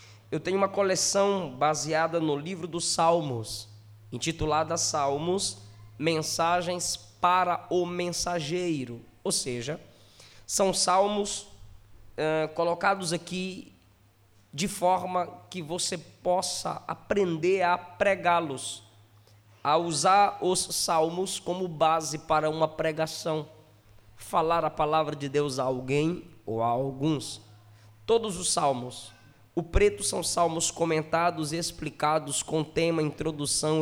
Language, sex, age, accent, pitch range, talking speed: English, male, 20-39, Brazilian, 125-170 Hz, 110 wpm